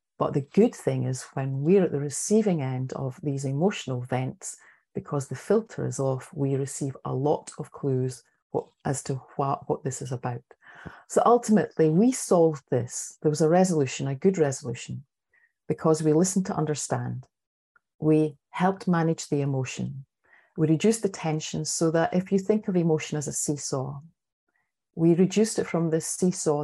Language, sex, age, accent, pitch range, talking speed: English, female, 30-49, British, 135-165 Hz, 170 wpm